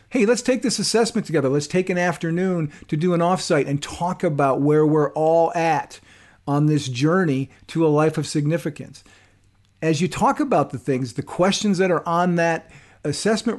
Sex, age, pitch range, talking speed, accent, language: male, 50-69, 140-185 Hz, 185 wpm, American, English